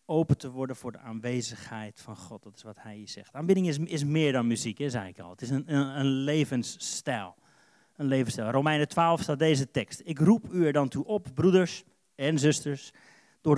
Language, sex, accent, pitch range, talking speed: Dutch, male, Dutch, 120-155 Hz, 210 wpm